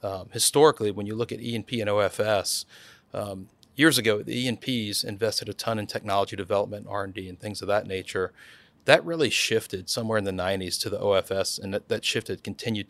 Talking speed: 200 wpm